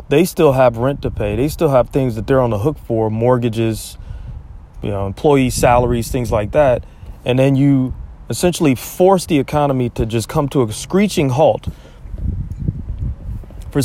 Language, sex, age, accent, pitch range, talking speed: English, male, 30-49, American, 115-145 Hz, 170 wpm